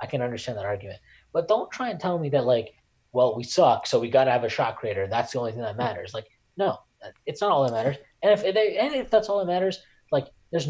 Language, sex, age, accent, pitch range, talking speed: English, male, 20-39, American, 105-145 Hz, 270 wpm